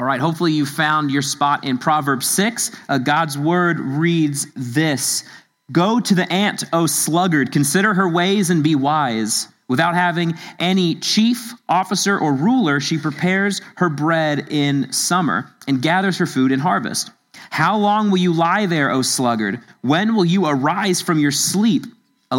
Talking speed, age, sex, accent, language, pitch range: 165 wpm, 30-49, male, American, English, 145-185 Hz